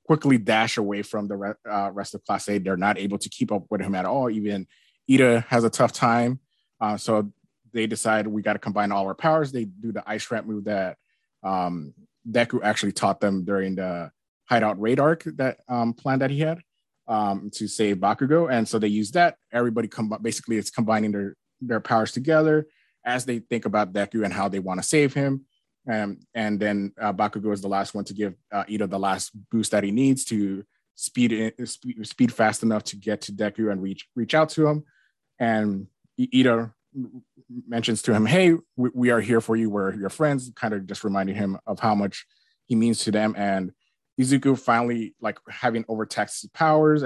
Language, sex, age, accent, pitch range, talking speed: English, male, 20-39, American, 100-125 Hz, 205 wpm